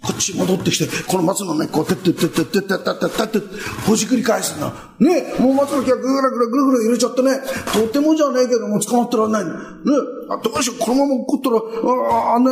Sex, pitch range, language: male, 205-260 Hz, Japanese